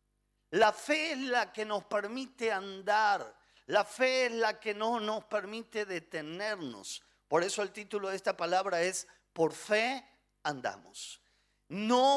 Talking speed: 145 wpm